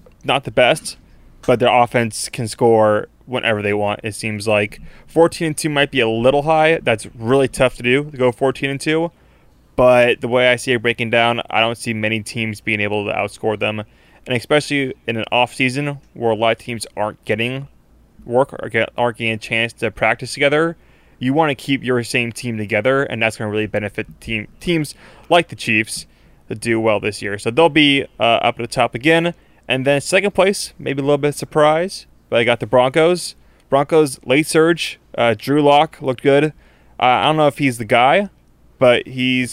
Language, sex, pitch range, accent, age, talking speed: English, male, 115-140 Hz, American, 20-39, 210 wpm